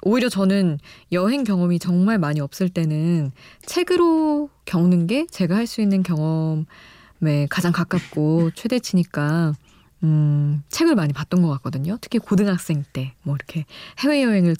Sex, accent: female, native